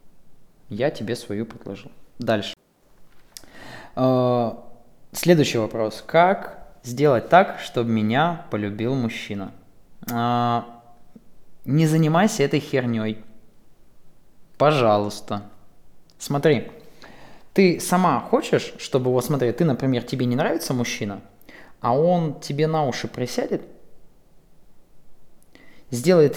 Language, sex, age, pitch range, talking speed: Bulgarian, male, 20-39, 115-145 Hz, 95 wpm